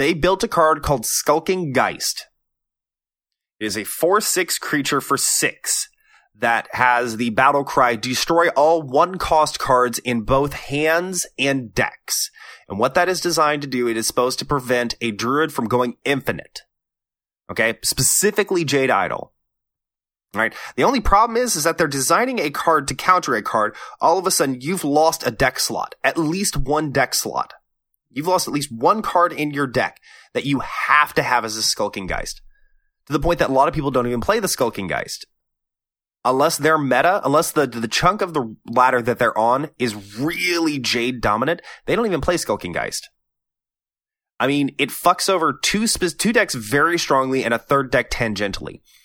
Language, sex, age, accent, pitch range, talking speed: English, male, 20-39, American, 120-170 Hz, 185 wpm